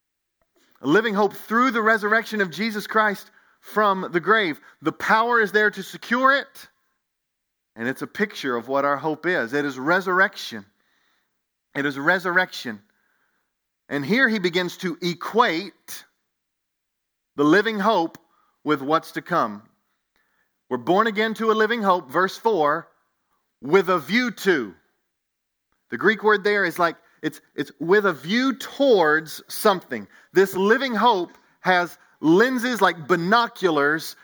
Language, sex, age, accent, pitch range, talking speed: English, male, 40-59, American, 160-220 Hz, 140 wpm